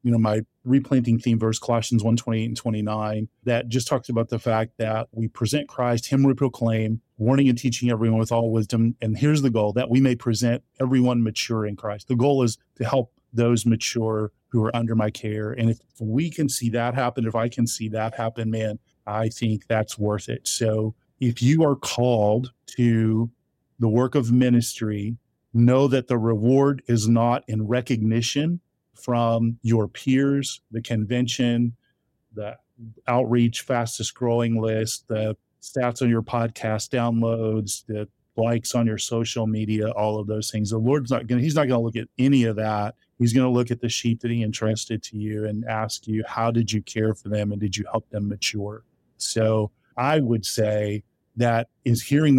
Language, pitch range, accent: English, 110-125 Hz, American